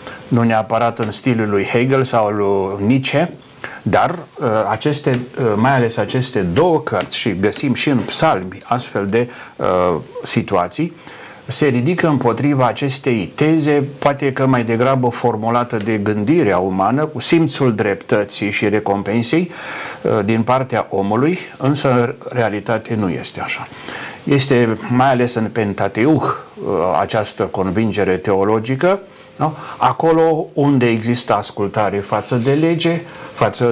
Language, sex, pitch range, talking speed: Romanian, male, 110-140 Hz, 125 wpm